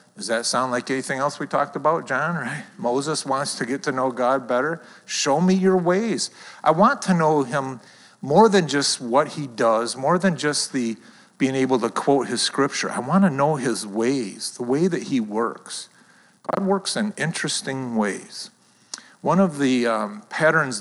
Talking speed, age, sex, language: 185 wpm, 50-69, male, English